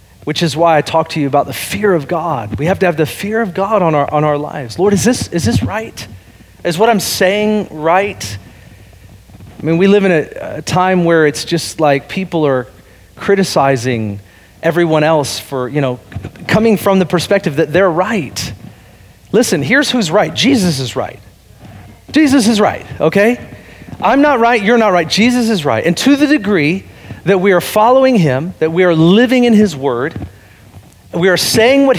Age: 40-59